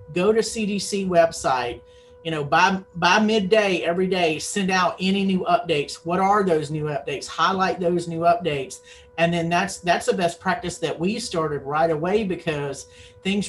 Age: 40-59